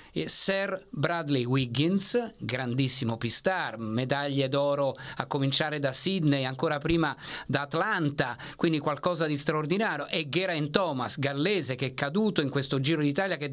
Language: Italian